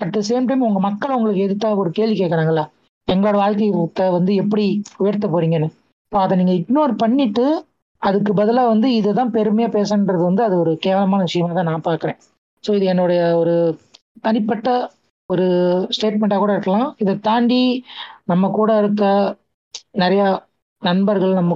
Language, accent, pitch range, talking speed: Tamil, native, 185-220 Hz, 150 wpm